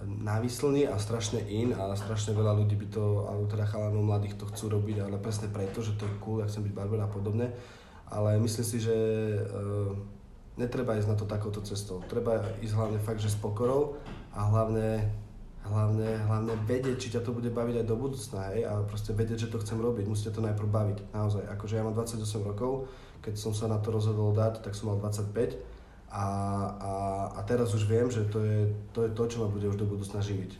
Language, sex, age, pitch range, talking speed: Slovak, male, 20-39, 105-110 Hz, 210 wpm